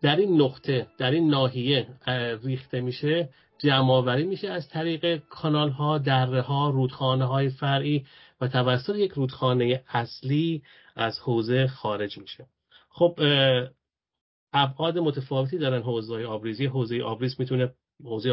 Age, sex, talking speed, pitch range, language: 40-59, male, 130 wpm, 115-140 Hz, English